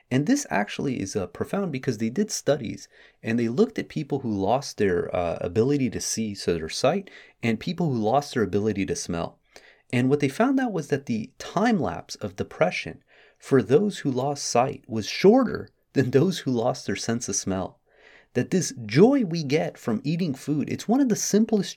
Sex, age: male, 30-49